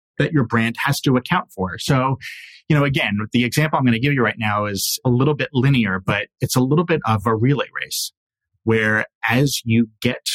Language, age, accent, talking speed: English, 30-49, American, 220 wpm